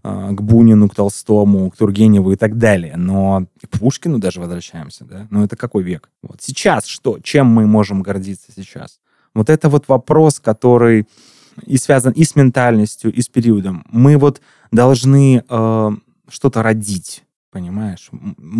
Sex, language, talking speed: male, Russian, 150 wpm